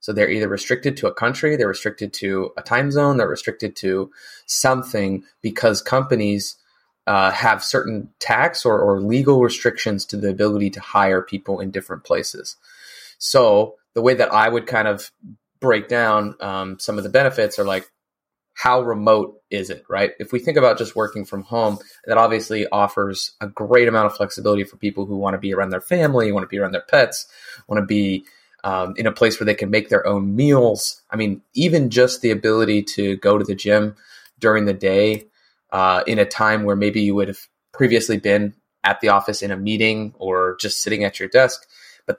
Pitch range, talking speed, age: 100-115 Hz, 200 wpm, 20-39